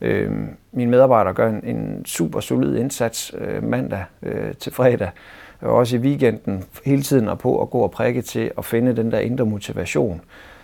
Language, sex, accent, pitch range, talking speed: Danish, male, native, 100-120 Hz, 190 wpm